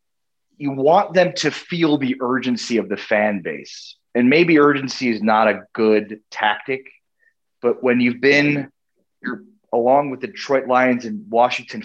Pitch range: 110-140 Hz